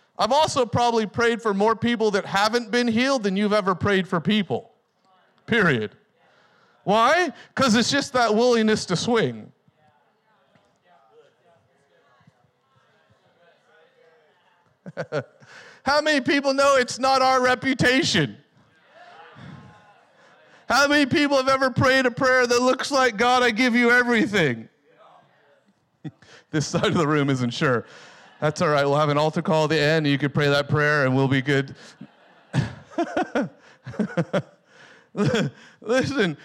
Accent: American